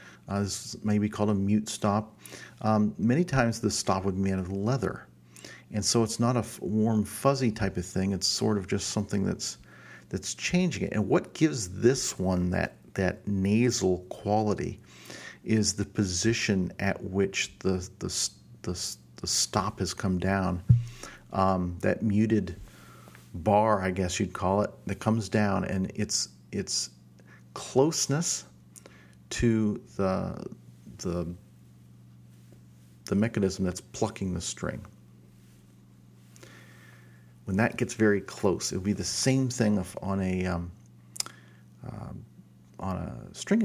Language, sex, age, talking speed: English, male, 50-69, 145 wpm